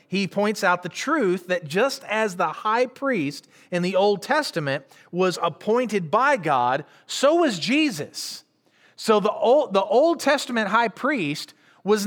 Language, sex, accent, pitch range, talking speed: English, male, American, 155-225 Hz, 150 wpm